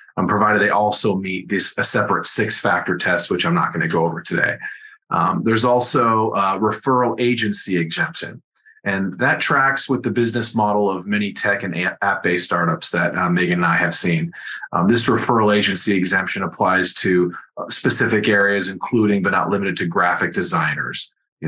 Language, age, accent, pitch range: English, 30-49, American, 90-115 Hz